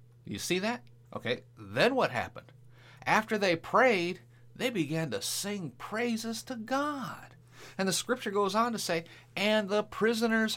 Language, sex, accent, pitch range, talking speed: English, male, American, 120-200 Hz, 155 wpm